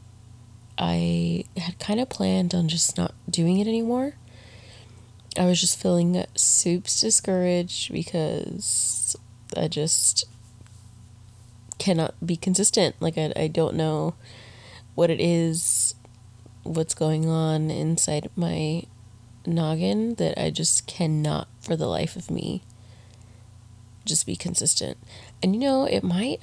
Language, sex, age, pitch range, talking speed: Swahili, female, 20-39, 110-170 Hz, 125 wpm